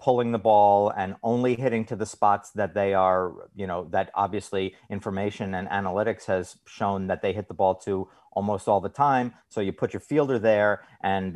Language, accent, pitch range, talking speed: English, American, 100-130 Hz, 200 wpm